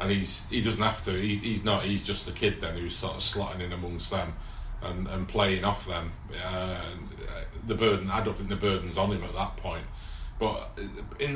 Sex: male